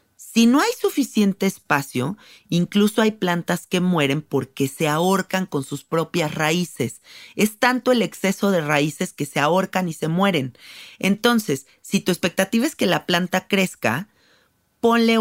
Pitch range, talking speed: 155-200 Hz, 155 wpm